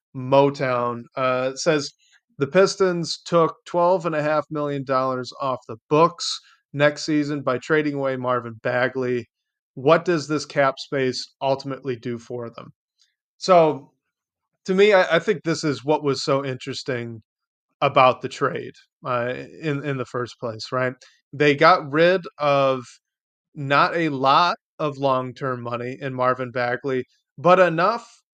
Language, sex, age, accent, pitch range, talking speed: English, male, 30-49, American, 130-155 Hz, 145 wpm